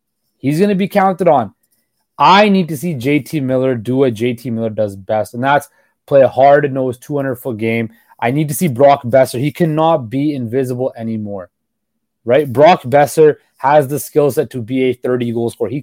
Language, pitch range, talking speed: English, 125-160 Hz, 205 wpm